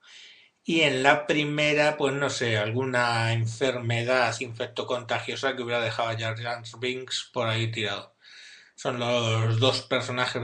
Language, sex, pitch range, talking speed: Spanish, male, 115-150 Hz, 130 wpm